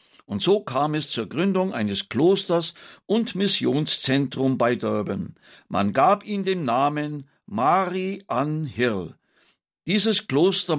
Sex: male